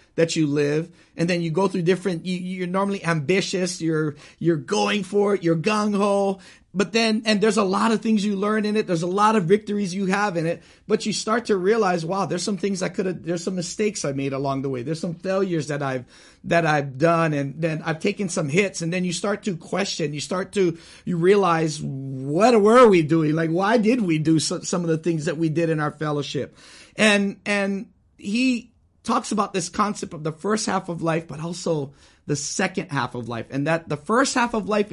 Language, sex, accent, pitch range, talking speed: English, male, American, 145-195 Hz, 230 wpm